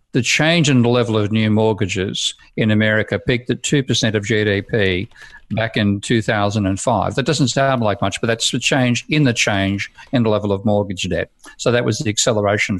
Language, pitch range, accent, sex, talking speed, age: English, 100-120 Hz, Australian, male, 190 wpm, 50-69